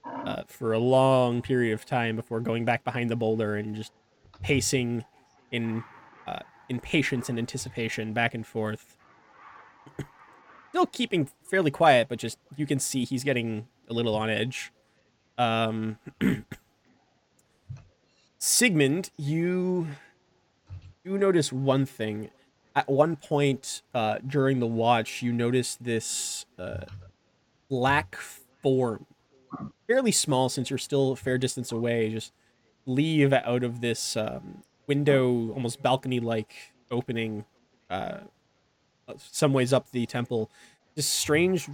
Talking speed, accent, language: 125 wpm, American, English